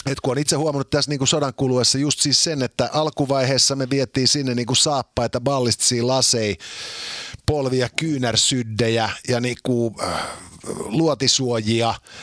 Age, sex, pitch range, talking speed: 50-69, male, 115-145 Hz, 135 wpm